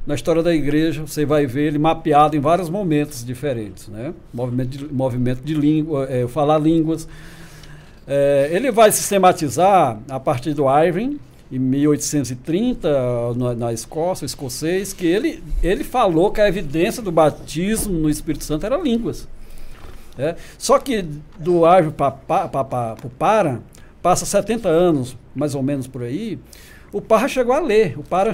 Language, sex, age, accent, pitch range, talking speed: Portuguese, male, 60-79, Brazilian, 140-190 Hz, 155 wpm